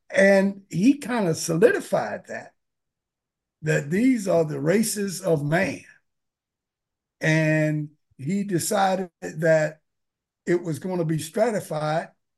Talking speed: 110 wpm